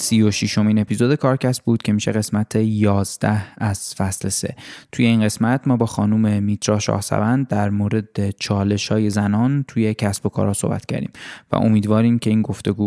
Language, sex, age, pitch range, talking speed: Persian, male, 20-39, 100-115 Hz, 175 wpm